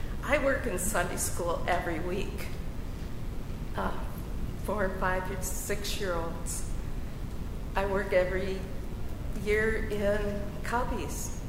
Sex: female